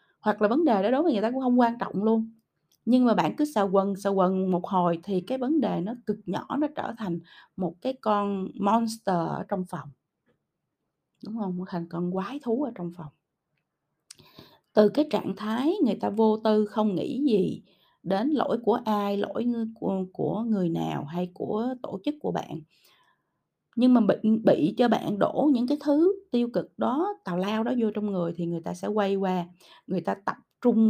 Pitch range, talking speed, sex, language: 180-235 Hz, 205 wpm, female, Vietnamese